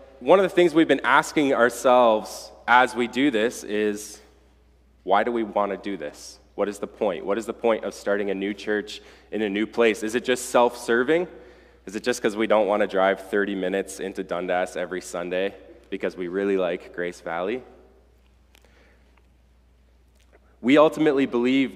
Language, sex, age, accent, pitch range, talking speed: English, male, 20-39, American, 90-125 Hz, 180 wpm